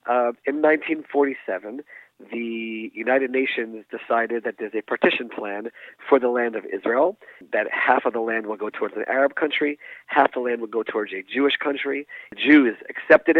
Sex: male